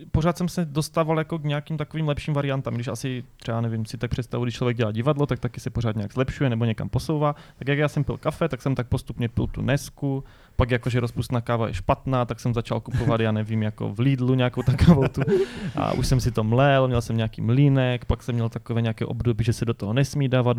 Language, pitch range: Czech, 115-145 Hz